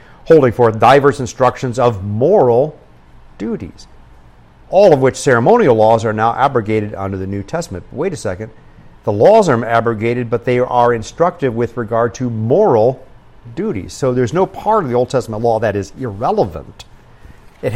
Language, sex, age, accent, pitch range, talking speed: English, male, 50-69, American, 100-125 Hz, 160 wpm